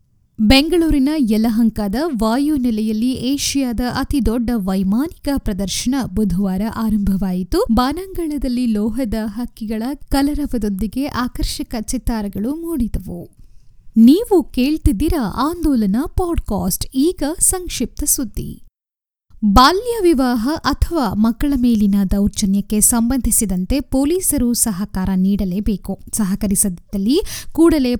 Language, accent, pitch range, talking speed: Kannada, native, 205-275 Hz, 75 wpm